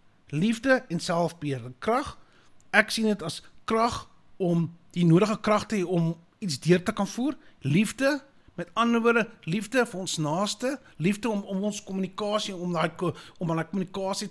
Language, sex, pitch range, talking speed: English, male, 160-205 Hz, 150 wpm